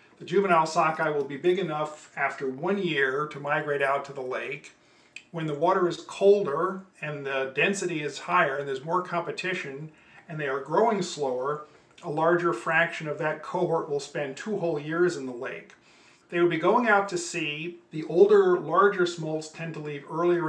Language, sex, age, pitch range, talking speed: English, male, 40-59, 145-175 Hz, 185 wpm